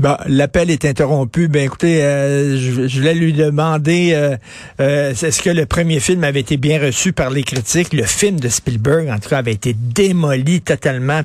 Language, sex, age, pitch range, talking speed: French, male, 50-69, 135-165 Hz, 195 wpm